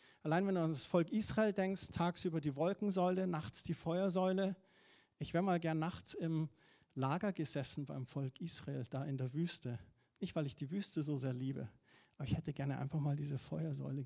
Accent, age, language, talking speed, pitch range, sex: German, 50-69, German, 190 wpm, 135-175 Hz, male